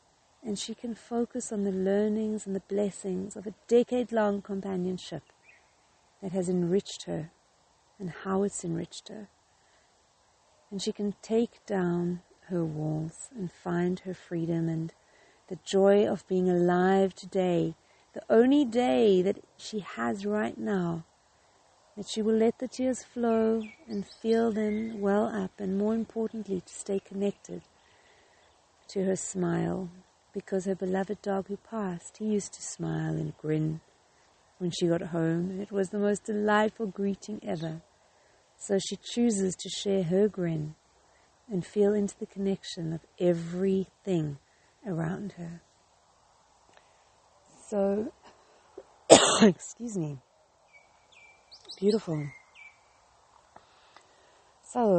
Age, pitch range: 50-69, 175-215 Hz